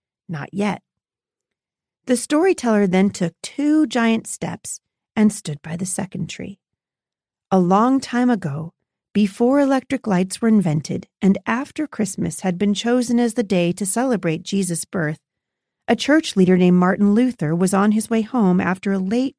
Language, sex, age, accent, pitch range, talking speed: English, female, 40-59, American, 170-230 Hz, 160 wpm